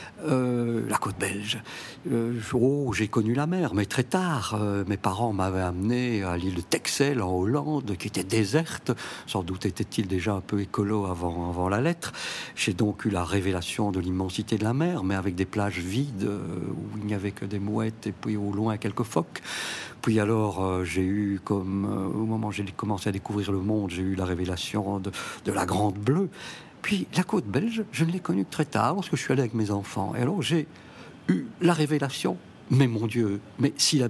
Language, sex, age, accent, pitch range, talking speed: French, male, 60-79, French, 100-140 Hz, 215 wpm